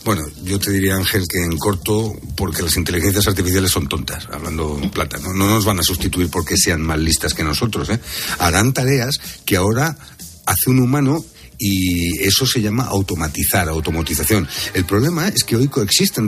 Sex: male